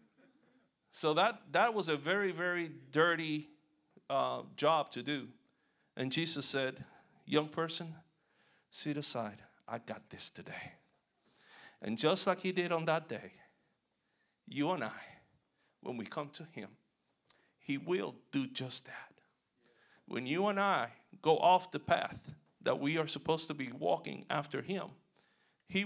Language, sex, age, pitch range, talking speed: English, male, 50-69, 130-160 Hz, 145 wpm